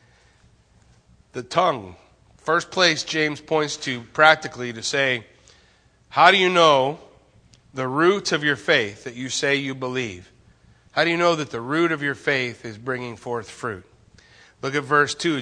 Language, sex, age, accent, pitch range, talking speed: English, male, 40-59, American, 125-170 Hz, 165 wpm